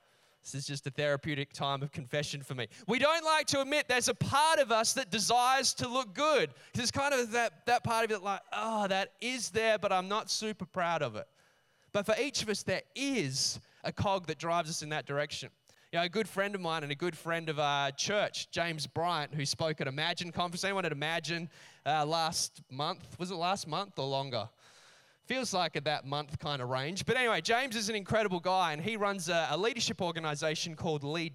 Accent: Australian